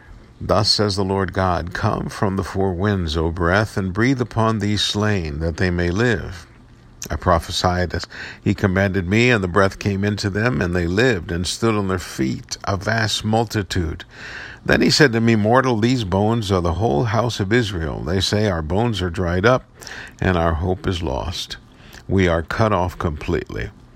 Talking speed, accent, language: 190 wpm, American, English